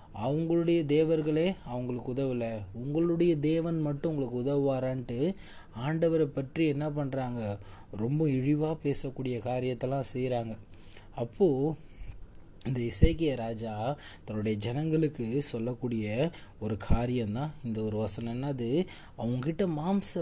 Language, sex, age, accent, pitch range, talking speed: Tamil, male, 20-39, native, 110-145 Hz, 95 wpm